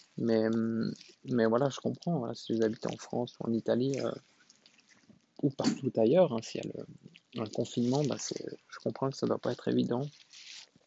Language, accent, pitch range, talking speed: French, French, 115-135 Hz, 200 wpm